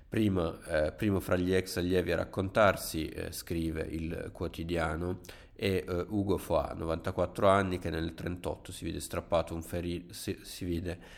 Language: Italian